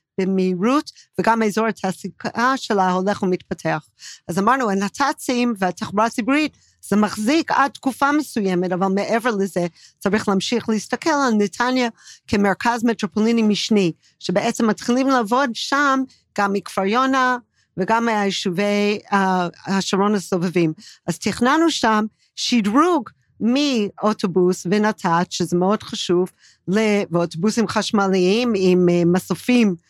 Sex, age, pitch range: female, 40-59, 185-235 Hz